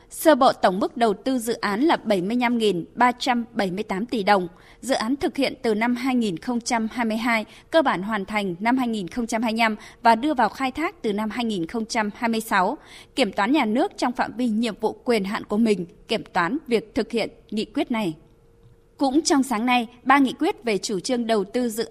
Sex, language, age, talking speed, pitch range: female, Vietnamese, 20-39, 185 wpm, 215-265 Hz